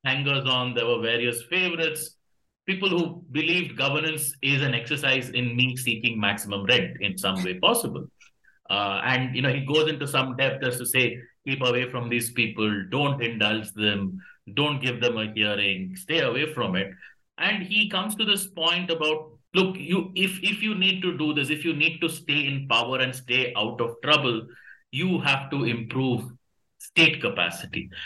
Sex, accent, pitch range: male, Indian, 125-180 Hz